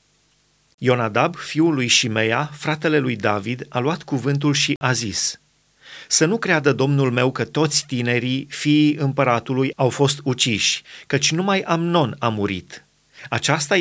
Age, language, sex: 30-49, Romanian, male